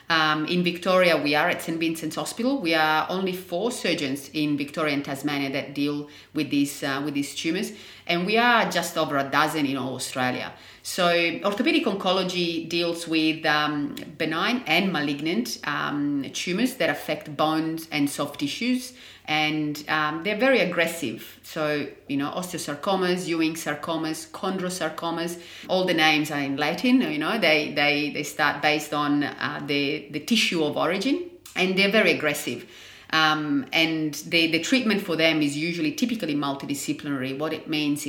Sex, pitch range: female, 145-175 Hz